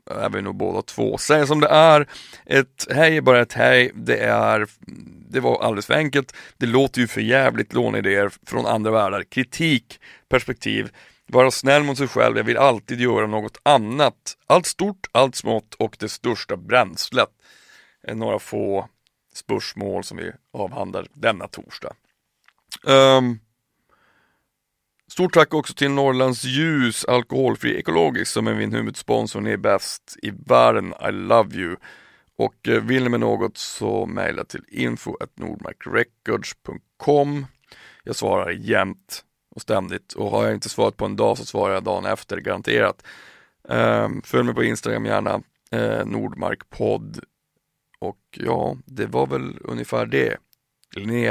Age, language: 30-49, Swedish